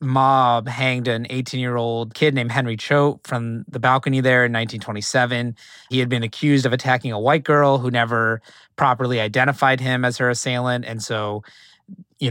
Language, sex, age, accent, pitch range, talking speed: English, male, 30-49, American, 120-135 Hz, 165 wpm